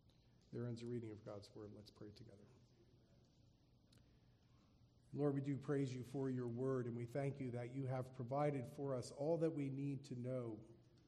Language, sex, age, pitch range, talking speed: English, male, 40-59, 125-160 Hz, 185 wpm